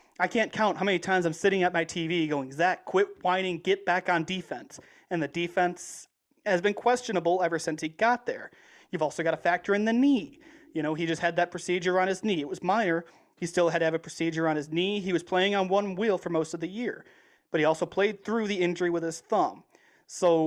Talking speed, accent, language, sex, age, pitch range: 245 wpm, American, English, male, 30-49, 165-195 Hz